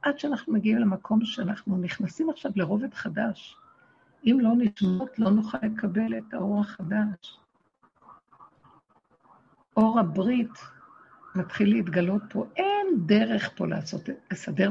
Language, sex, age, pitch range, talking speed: Hebrew, female, 60-79, 190-230 Hz, 110 wpm